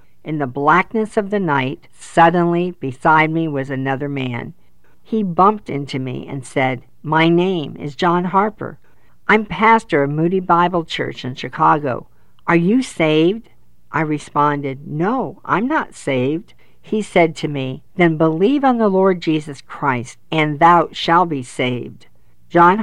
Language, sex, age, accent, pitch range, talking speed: English, female, 50-69, American, 135-175 Hz, 150 wpm